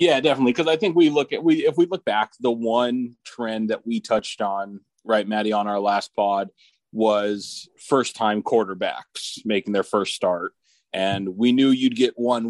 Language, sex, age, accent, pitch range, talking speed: English, male, 30-49, American, 95-115 Hz, 190 wpm